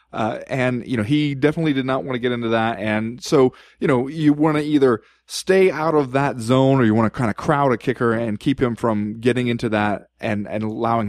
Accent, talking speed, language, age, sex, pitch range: American, 245 wpm, English, 30-49, male, 110-140 Hz